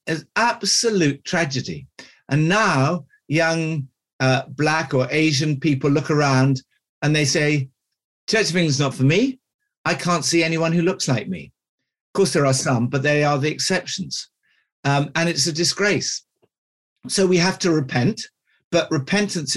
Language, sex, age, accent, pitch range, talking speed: Dutch, male, 50-69, British, 130-170 Hz, 165 wpm